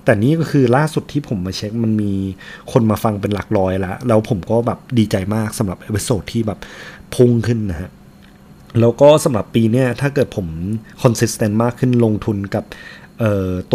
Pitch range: 100-125 Hz